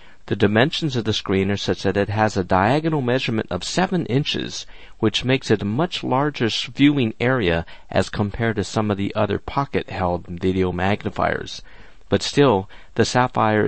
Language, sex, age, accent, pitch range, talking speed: English, male, 50-69, American, 95-130 Hz, 170 wpm